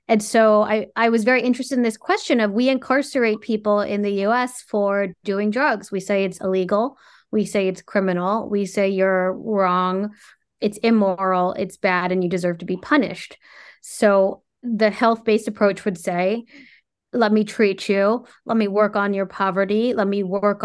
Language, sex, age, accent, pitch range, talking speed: English, female, 30-49, American, 190-220 Hz, 175 wpm